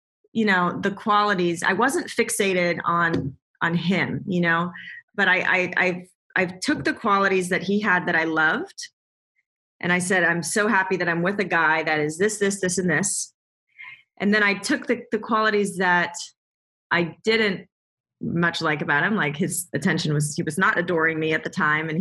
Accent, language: American, English